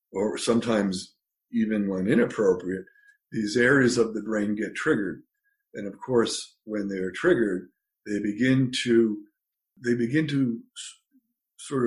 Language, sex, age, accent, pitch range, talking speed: English, male, 50-69, American, 105-165 Hz, 130 wpm